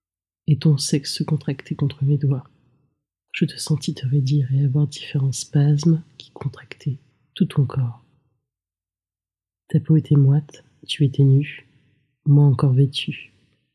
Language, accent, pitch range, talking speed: French, French, 130-150 Hz, 140 wpm